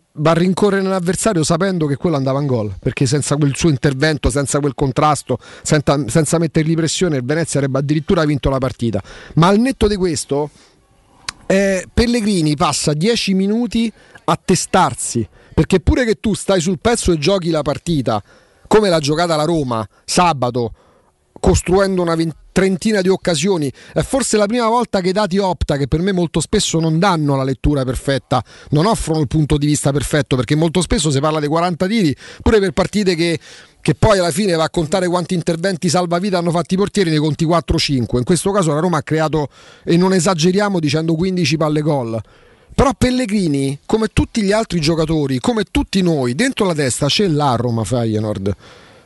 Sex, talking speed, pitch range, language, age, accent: male, 180 wpm, 145-190 Hz, Italian, 40-59, native